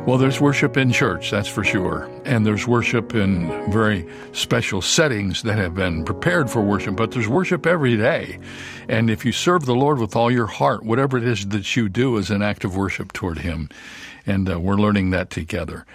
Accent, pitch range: American, 95-120 Hz